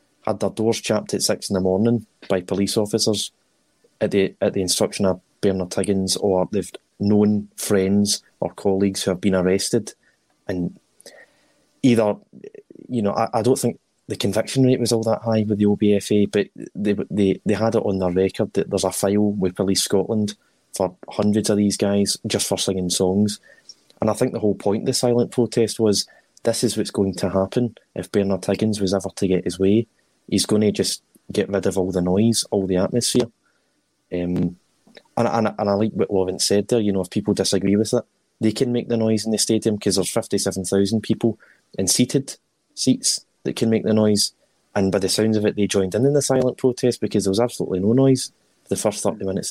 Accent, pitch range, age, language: British, 95-115 Hz, 20-39, English